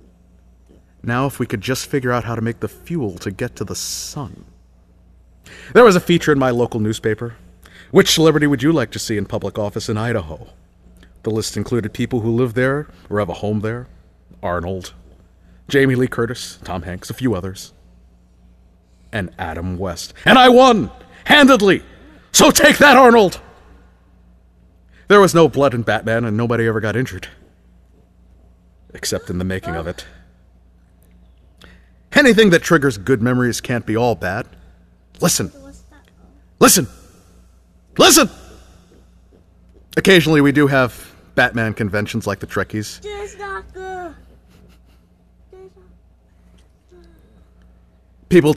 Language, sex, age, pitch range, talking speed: English, male, 40-59, 90-135 Hz, 135 wpm